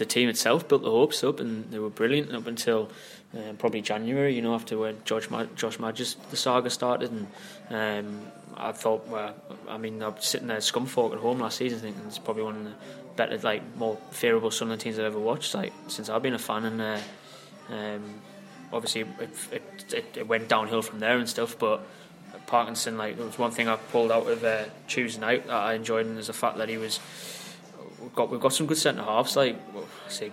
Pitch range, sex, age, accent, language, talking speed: 110-125 Hz, male, 20-39, British, English, 225 wpm